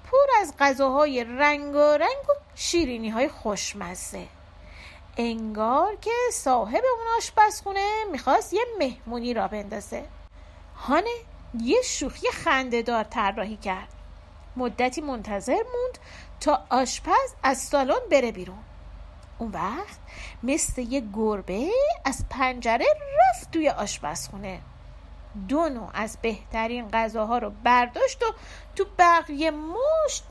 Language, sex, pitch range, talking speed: Persian, female, 230-340 Hz, 105 wpm